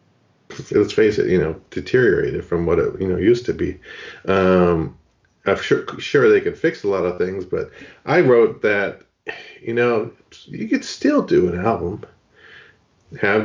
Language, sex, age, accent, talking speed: English, male, 40-59, American, 170 wpm